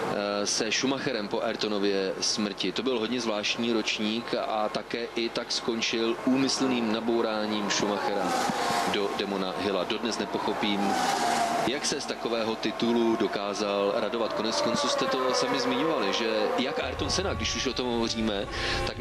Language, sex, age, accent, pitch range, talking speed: Czech, male, 30-49, native, 105-120 Hz, 145 wpm